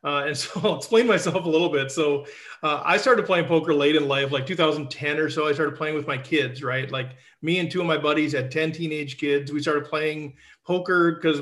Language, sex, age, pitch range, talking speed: English, male, 40-59, 145-180 Hz, 235 wpm